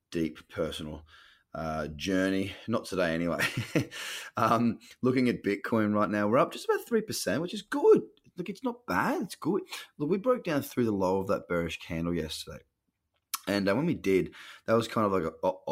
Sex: male